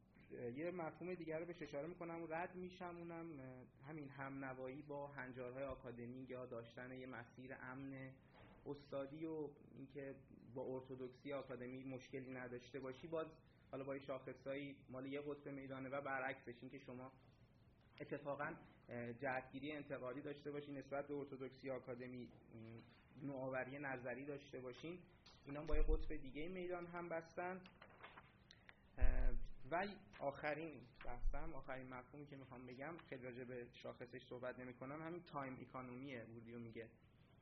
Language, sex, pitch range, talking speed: Persian, male, 125-145 Hz, 130 wpm